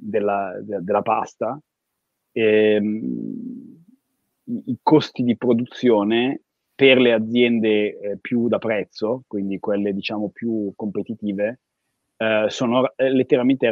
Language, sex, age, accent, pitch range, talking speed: Italian, male, 30-49, native, 105-120 Hz, 100 wpm